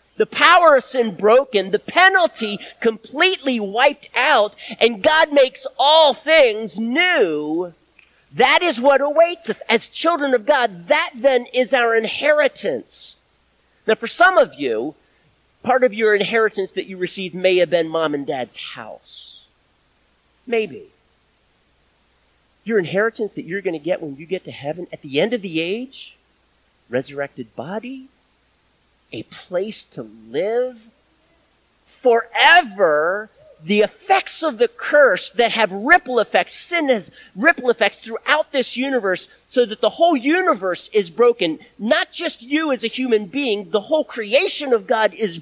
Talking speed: 145 wpm